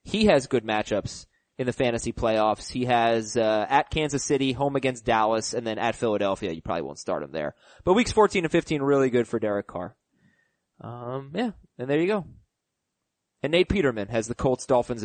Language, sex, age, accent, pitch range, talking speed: English, male, 20-39, American, 120-150 Hz, 200 wpm